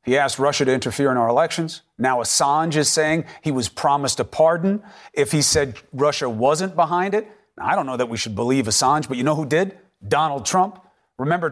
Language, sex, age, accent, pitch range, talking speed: English, male, 40-59, American, 140-195 Hz, 215 wpm